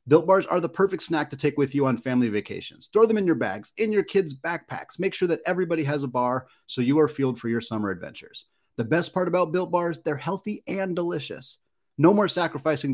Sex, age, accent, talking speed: male, 30-49, American, 230 wpm